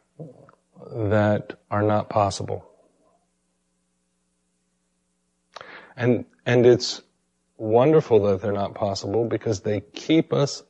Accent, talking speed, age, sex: American, 90 wpm, 40-59, male